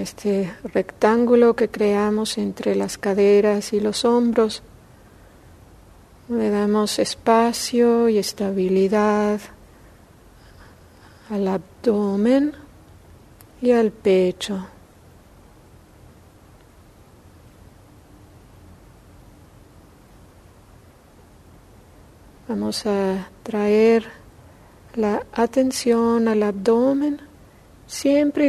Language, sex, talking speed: English, female, 60 wpm